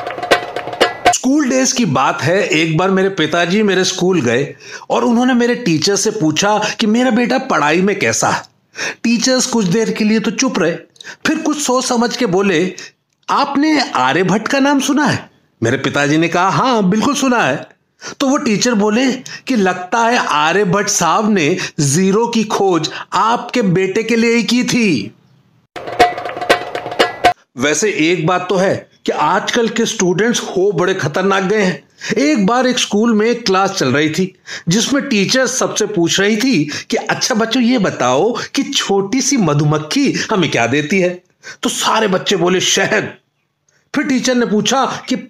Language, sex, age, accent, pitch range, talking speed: Hindi, male, 40-59, native, 185-250 Hz, 160 wpm